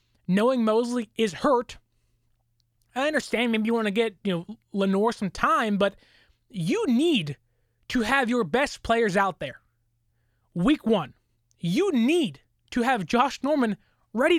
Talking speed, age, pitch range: 145 wpm, 20-39, 160-255 Hz